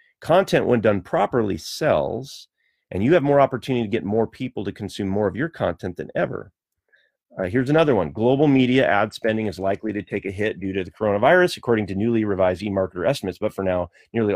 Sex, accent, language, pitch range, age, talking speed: male, American, English, 90-115 Hz, 30-49, 210 wpm